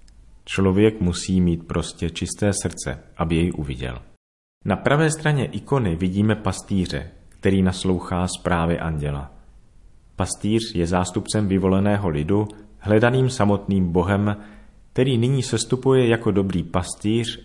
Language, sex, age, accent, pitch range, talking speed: Czech, male, 40-59, native, 90-110 Hz, 115 wpm